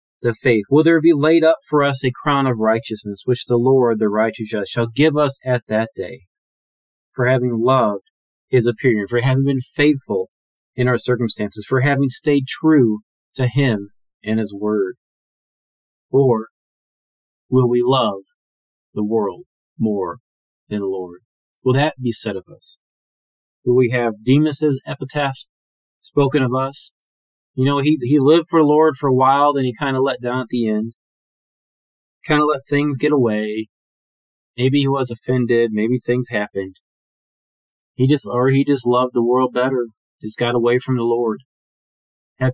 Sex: male